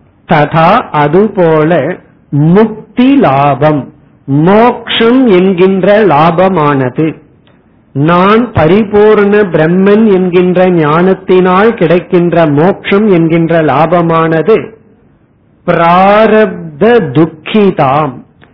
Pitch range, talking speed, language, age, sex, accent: 155-205 Hz, 55 wpm, Tamil, 50-69, male, native